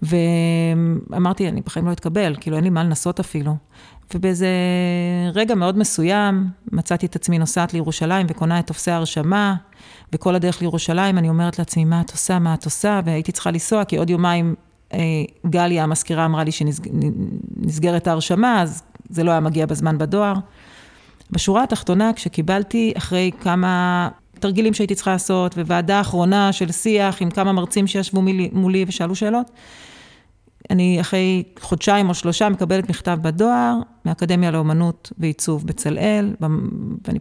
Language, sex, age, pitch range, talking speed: Hebrew, female, 30-49, 165-195 Hz, 140 wpm